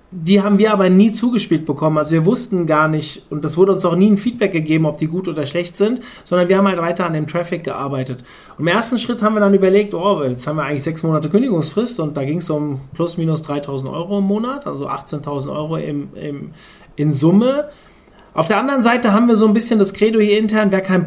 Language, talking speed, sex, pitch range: German, 235 wpm, male, 150-205 Hz